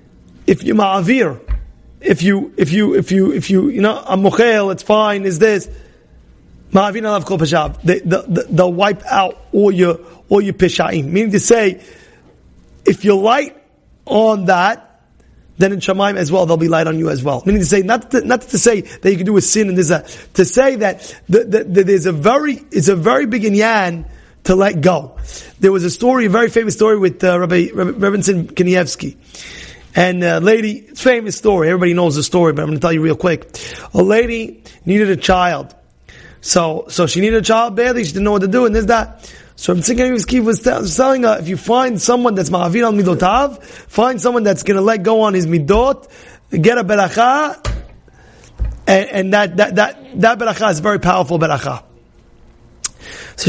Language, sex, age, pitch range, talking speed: English, male, 30-49, 180-220 Hz, 195 wpm